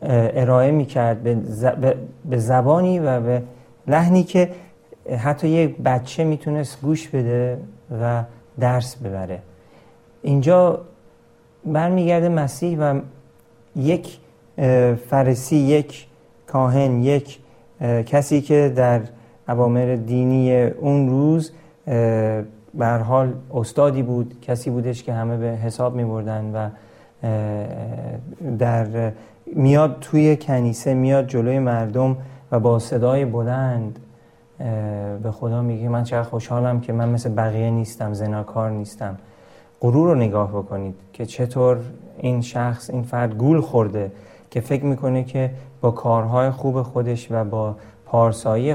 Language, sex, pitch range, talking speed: Persian, male, 115-140 Hz, 110 wpm